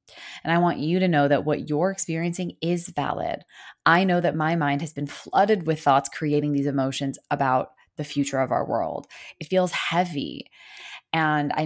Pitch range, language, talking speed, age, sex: 145-175 Hz, English, 185 wpm, 20-39, female